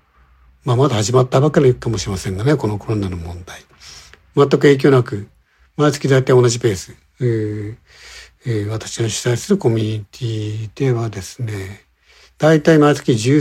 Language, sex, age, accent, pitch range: Japanese, male, 60-79, native, 105-145 Hz